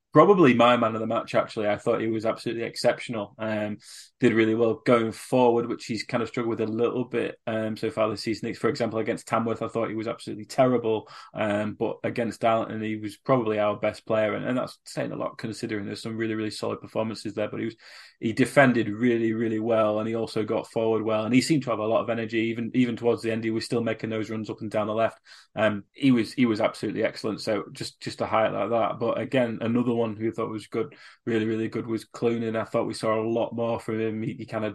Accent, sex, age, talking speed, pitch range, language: British, male, 20-39, 260 wpm, 110-120 Hz, English